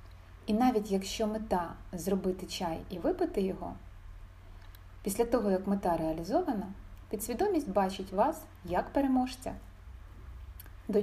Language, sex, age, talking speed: Ukrainian, female, 30-49, 115 wpm